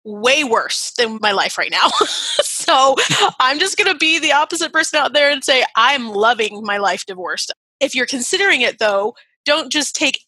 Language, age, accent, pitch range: English, 30-49, American, 210-275 Hz